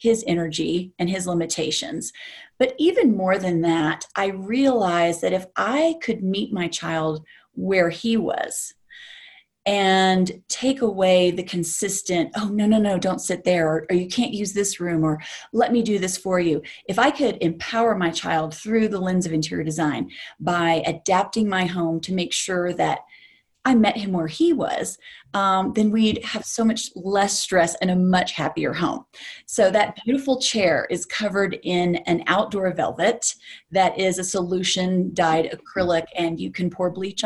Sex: female